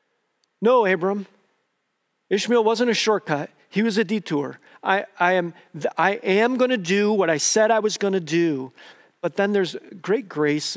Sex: male